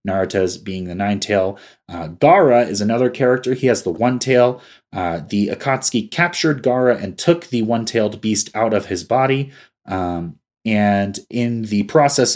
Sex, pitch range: male, 100-125 Hz